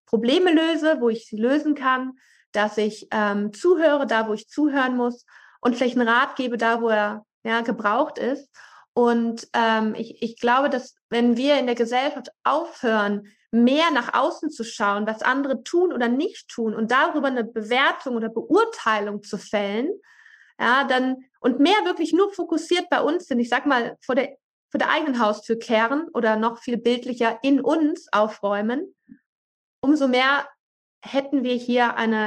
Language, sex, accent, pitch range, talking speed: German, female, German, 220-275 Hz, 170 wpm